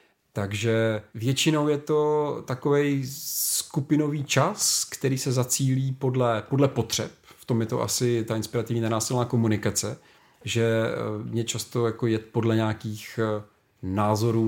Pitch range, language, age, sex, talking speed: 110-135 Hz, Czech, 40-59, male, 125 wpm